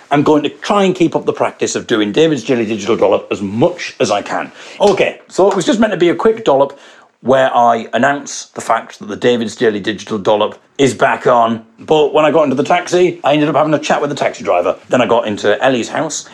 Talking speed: 250 wpm